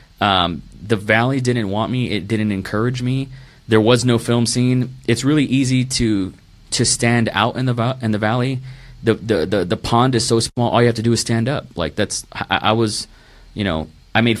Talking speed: 220 wpm